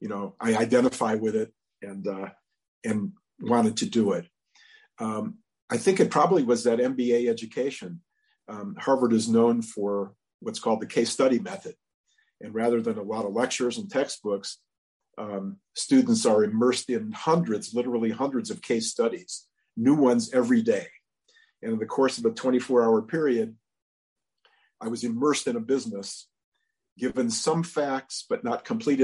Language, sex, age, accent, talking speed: English, male, 50-69, American, 160 wpm